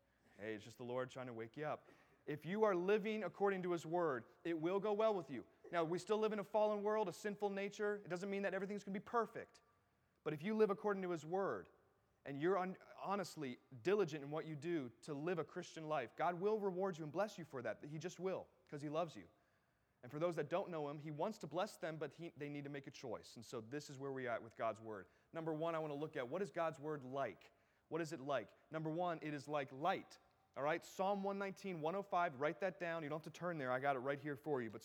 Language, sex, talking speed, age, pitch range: English, male, 265 wpm, 30-49, 150-200 Hz